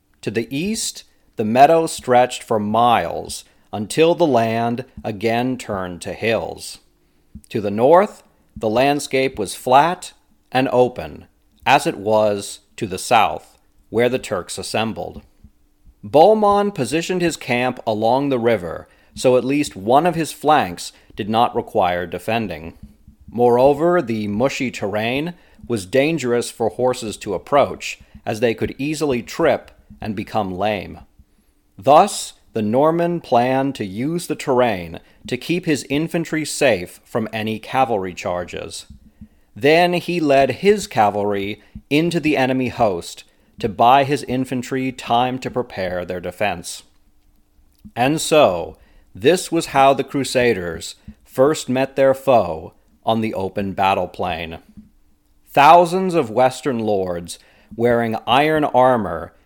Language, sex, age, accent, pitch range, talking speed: English, male, 40-59, American, 105-140 Hz, 130 wpm